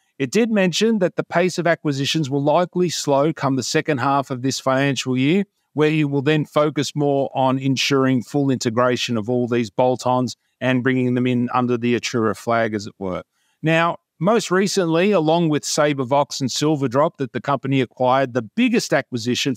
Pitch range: 125-160 Hz